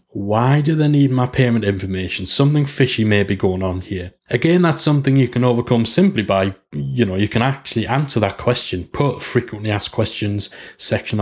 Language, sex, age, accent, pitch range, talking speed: English, male, 30-49, British, 100-125 Hz, 185 wpm